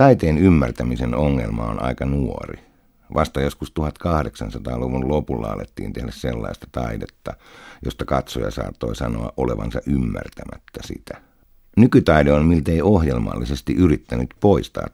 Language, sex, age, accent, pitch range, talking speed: Finnish, male, 60-79, native, 65-80 Hz, 110 wpm